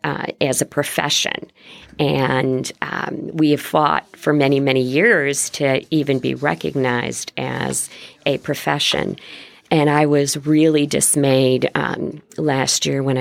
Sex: female